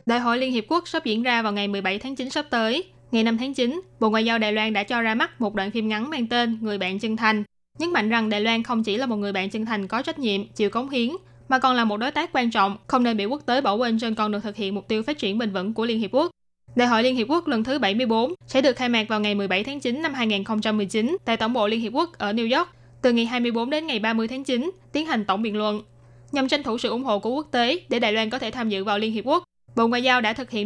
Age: 20-39